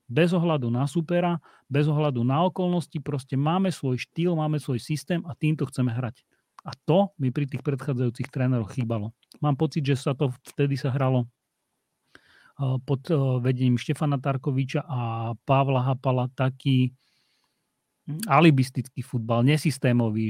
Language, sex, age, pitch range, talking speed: Slovak, male, 40-59, 130-150 Hz, 135 wpm